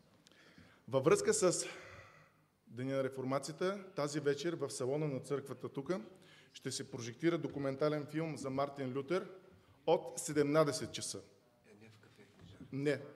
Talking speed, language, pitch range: 115 wpm, English, 115-155 Hz